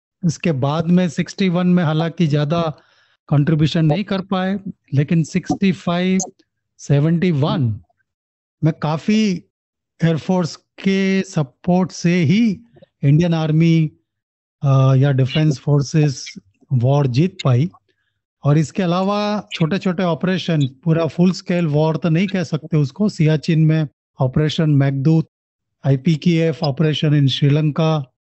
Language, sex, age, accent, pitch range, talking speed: Hindi, male, 40-59, native, 145-175 Hz, 110 wpm